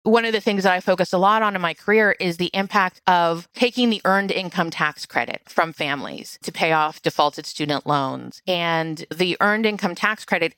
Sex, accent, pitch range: female, American, 165-210 Hz